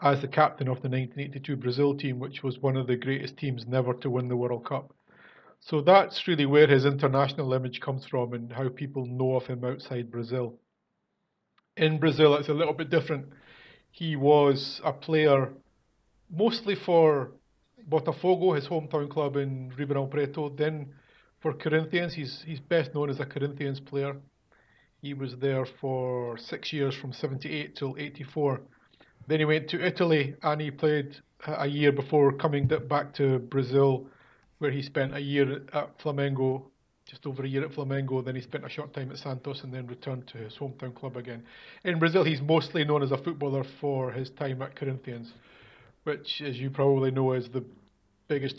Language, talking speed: English, 180 wpm